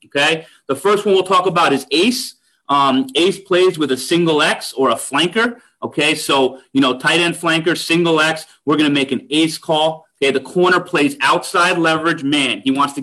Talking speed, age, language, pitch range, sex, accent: 205 wpm, 30-49, English, 135-170 Hz, male, American